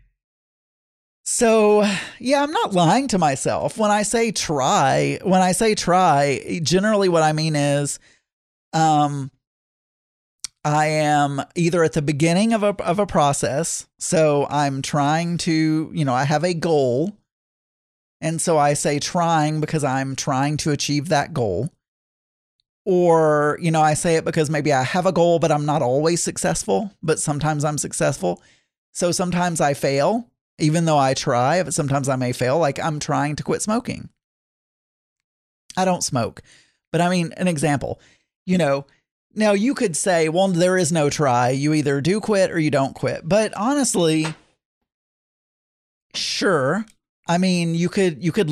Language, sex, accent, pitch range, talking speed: English, male, American, 145-180 Hz, 160 wpm